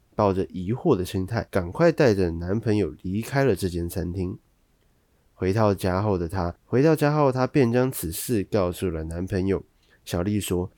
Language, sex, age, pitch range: Chinese, male, 20-39, 90-120 Hz